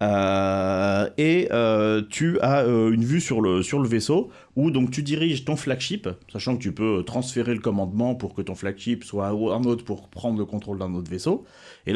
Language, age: French, 30-49